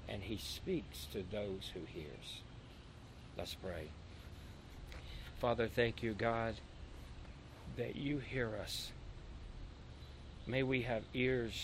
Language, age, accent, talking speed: English, 60-79, American, 110 wpm